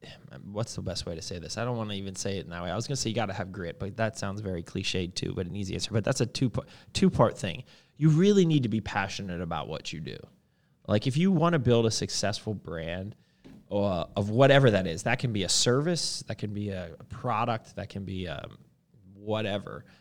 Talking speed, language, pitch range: 245 wpm, English, 100-120 Hz